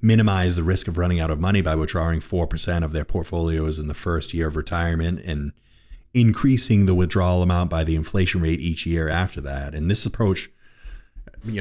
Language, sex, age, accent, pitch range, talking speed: English, male, 30-49, American, 75-95 Hz, 190 wpm